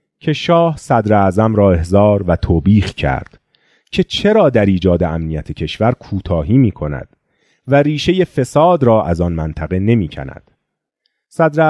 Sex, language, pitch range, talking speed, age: male, Persian, 95-140 Hz, 145 wpm, 30-49